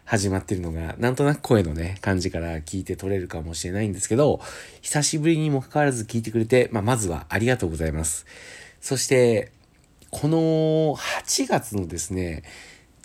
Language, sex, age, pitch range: Japanese, male, 40-59, 95-150 Hz